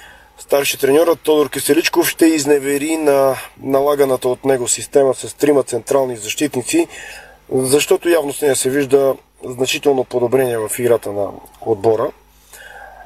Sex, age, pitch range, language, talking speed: male, 30-49, 125-150 Hz, Bulgarian, 120 wpm